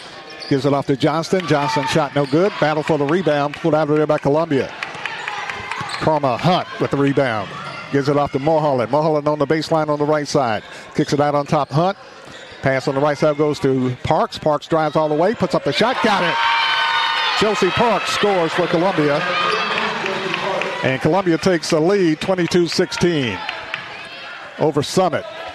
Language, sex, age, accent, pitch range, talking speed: English, male, 50-69, American, 145-180 Hz, 175 wpm